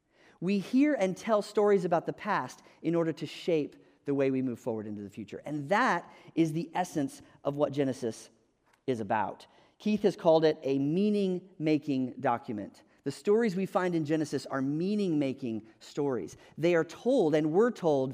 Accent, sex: American, male